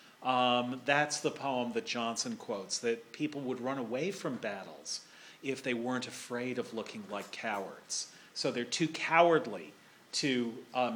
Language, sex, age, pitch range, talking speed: English, male, 40-59, 125-195 Hz, 155 wpm